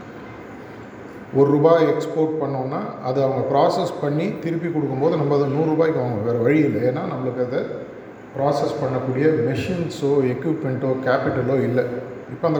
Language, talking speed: Tamil, 135 wpm